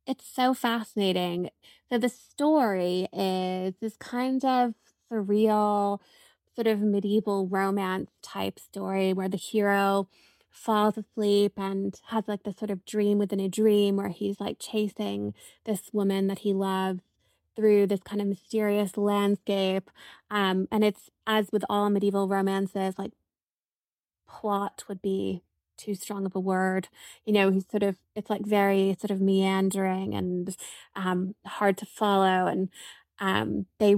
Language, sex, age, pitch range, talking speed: English, female, 20-39, 190-215 Hz, 145 wpm